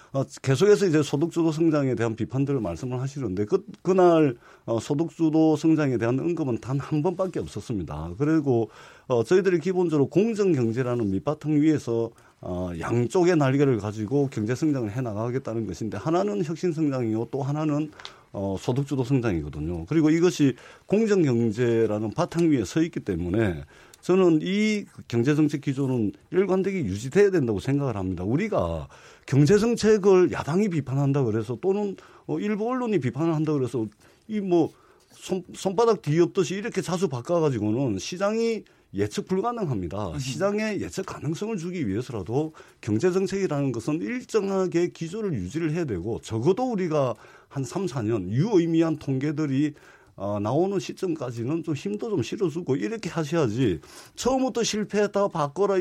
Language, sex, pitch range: Korean, male, 125-185 Hz